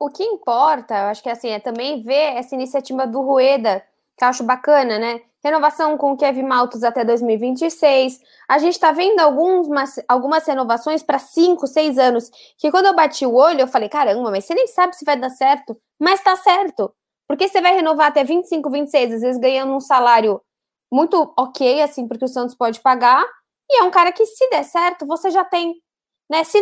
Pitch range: 250-315 Hz